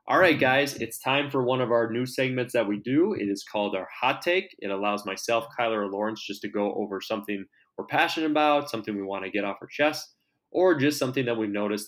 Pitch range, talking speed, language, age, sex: 105-135 Hz, 245 wpm, English, 20-39, male